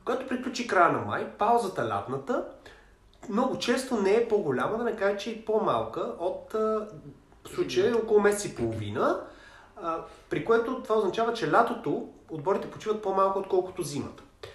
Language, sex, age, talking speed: Bulgarian, male, 30-49, 145 wpm